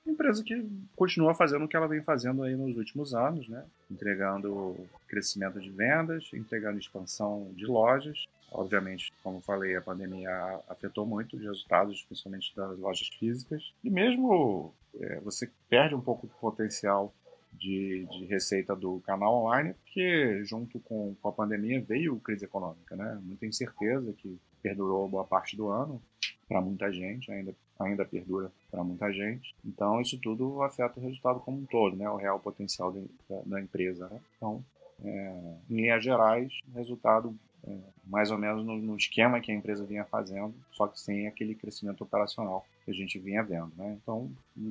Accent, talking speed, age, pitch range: Brazilian, 170 wpm, 30-49, 95-115 Hz